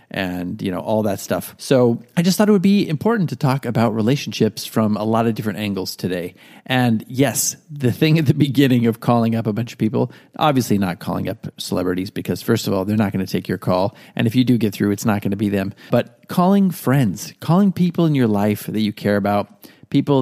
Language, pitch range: English, 105-145 Hz